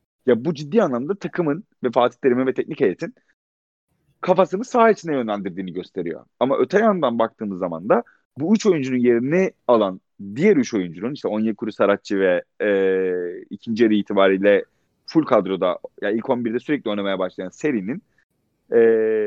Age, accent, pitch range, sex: 40-59, native, 115-185 Hz, male